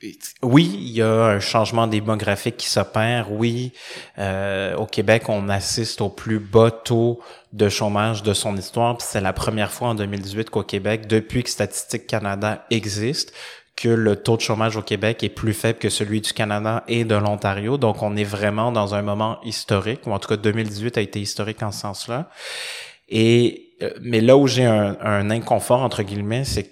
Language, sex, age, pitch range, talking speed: French, male, 20-39, 105-115 Hz, 190 wpm